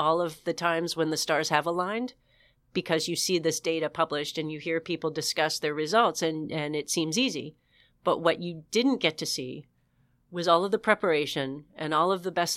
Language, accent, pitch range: English, American, 150-180 Hz